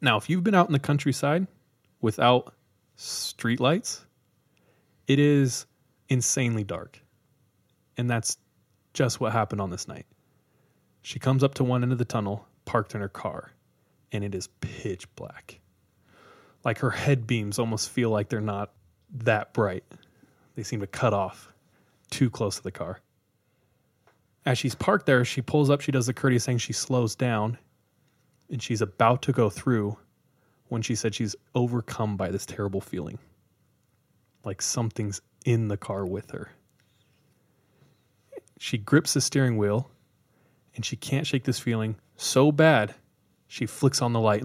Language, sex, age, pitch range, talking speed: English, male, 20-39, 105-130 Hz, 155 wpm